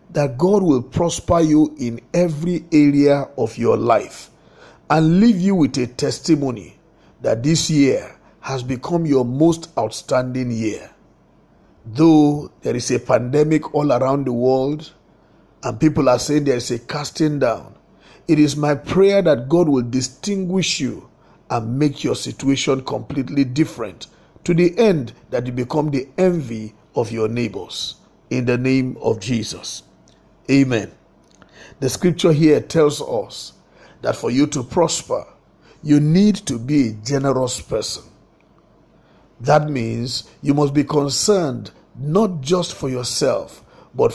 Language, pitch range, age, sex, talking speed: English, 125-160 Hz, 50-69, male, 140 wpm